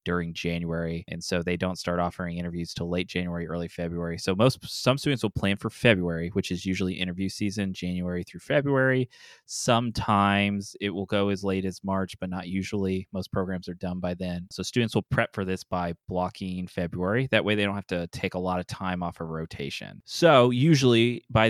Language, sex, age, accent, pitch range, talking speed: English, male, 20-39, American, 90-105 Hz, 205 wpm